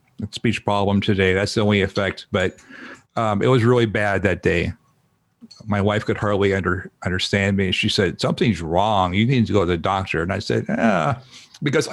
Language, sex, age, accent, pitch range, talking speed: English, male, 50-69, American, 100-125 Hz, 185 wpm